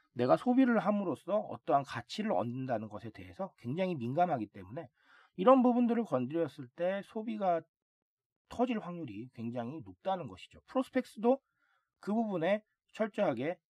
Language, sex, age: Korean, male, 40-59